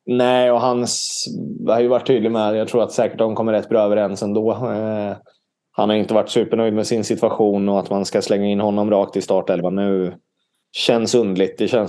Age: 20-39